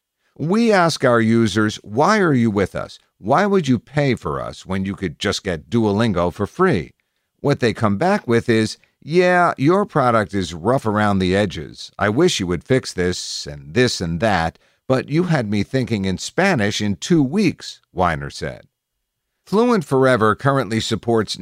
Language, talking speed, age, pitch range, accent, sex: English, 175 wpm, 50-69, 95-130 Hz, American, male